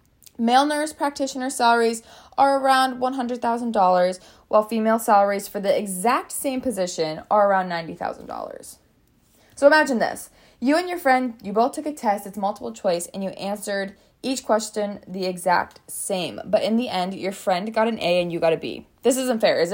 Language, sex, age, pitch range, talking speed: English, female, 20-39, 185-250 Hz, 180 wpm